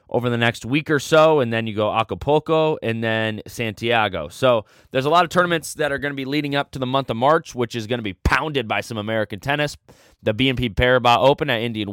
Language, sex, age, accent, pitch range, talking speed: English, male, 20-39, American, 110-140 Hz, 240 wpm